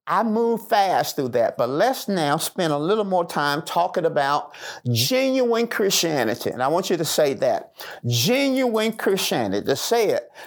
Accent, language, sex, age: American, English, male, 50-69